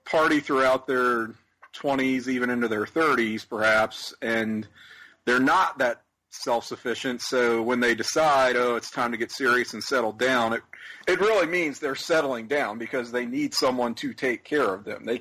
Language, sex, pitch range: English, male, 115-135 Hz